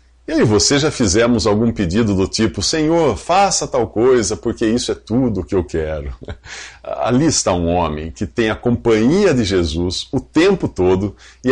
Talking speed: 180 wpm